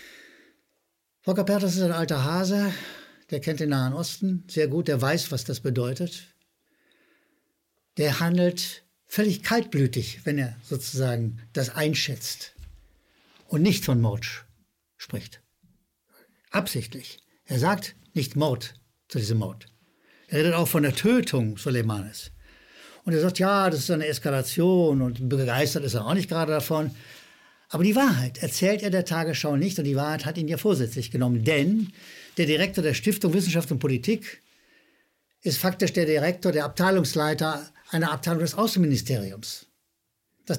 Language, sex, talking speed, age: German, male, 145 wpm, 60-79